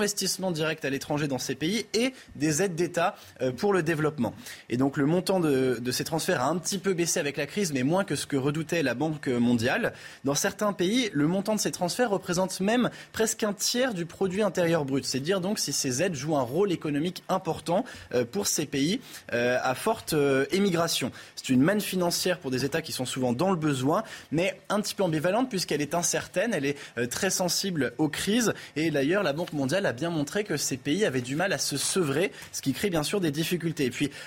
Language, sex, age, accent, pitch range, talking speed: French, male, 20-39, French, 130-180 Hz, 220 wpm